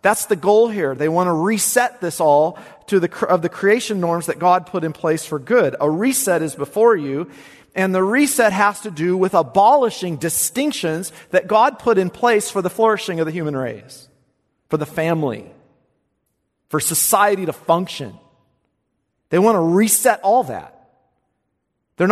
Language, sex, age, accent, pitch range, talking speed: English, male, 40-59, American, 150-215 Hz, 170 wpm